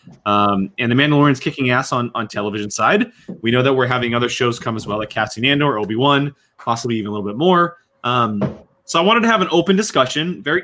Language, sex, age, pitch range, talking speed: English, male, 20-39, 105-140 Hz, 230 wpm